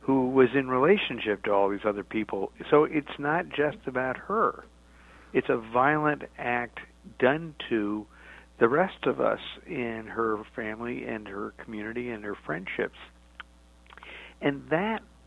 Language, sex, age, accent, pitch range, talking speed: English, male, 50-69, American, 105-135 Hz, 140 wpm